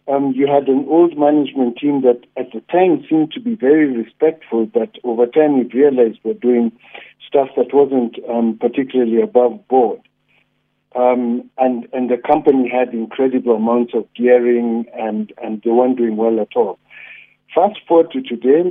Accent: South African